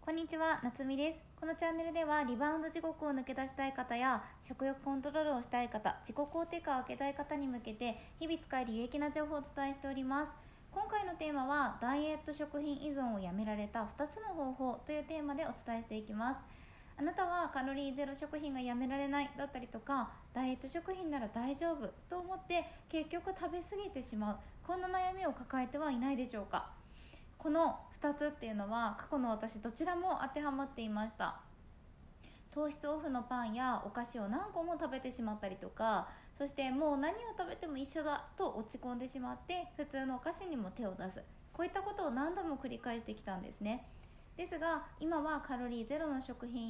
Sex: female